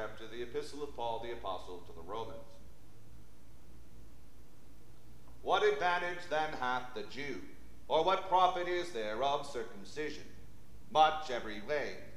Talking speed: 130 wpm